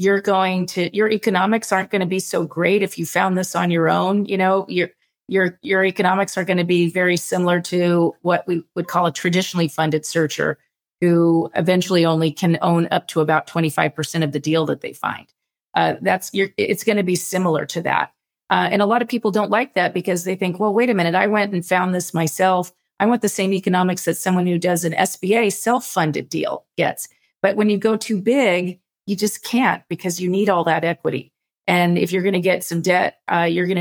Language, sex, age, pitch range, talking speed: English, female, 40-59, 170-195 Hz, 225 wpm